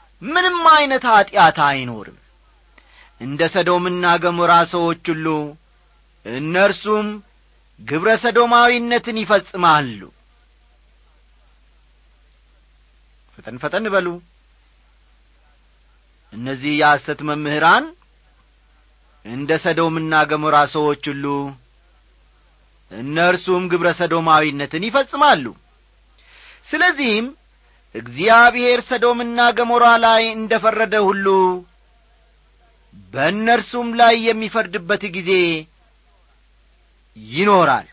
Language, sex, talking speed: Amharic, male, 65 wpm